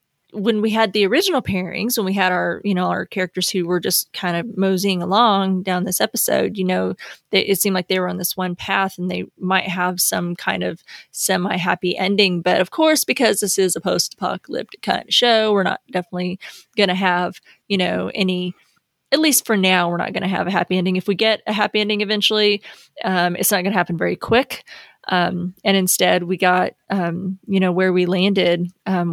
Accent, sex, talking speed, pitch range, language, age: American, female, 215 wpm, 180-200 Hz, English, 30-49